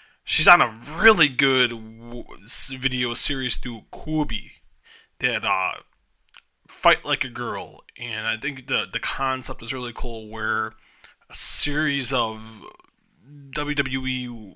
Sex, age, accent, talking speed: male, 20-39, American, 120 wpm